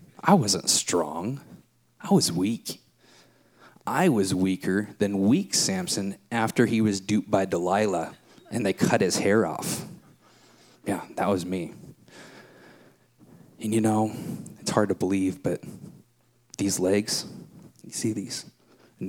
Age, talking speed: 30-49, 130 wpm